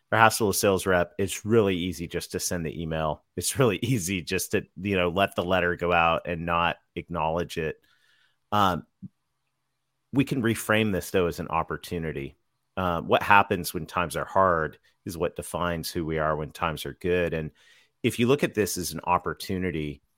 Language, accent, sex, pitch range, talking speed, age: English, American, male, 80-95 Hz, 185 wpm, 30-49